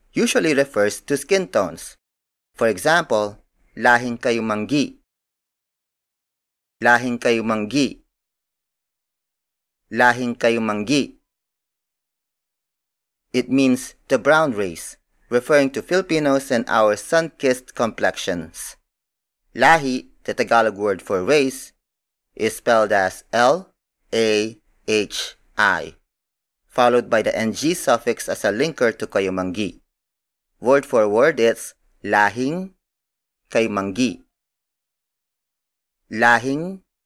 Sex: male